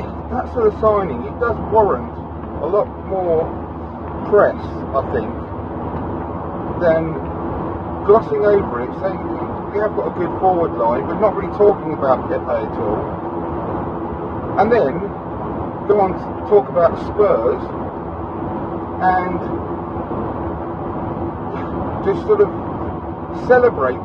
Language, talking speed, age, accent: English, 115 wpm, 40-59, British